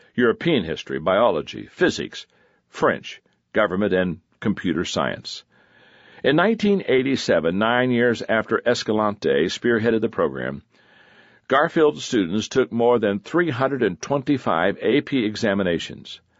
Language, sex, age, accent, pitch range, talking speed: English, male, 60-79, American, 95-135 Hz, 95 wpm